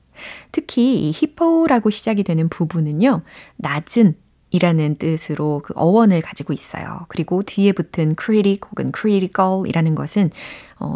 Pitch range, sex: 160-230 Hz, female